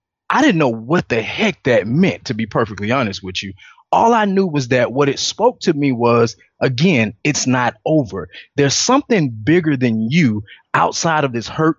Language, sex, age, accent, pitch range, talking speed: English, male, 30-49, American, 120-160 Hz, 195 wpm